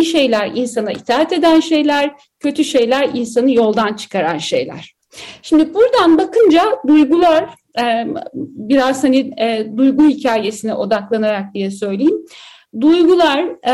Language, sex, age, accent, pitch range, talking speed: Turkish, female, 60-79, native, 235-300 Hz, 100 wpm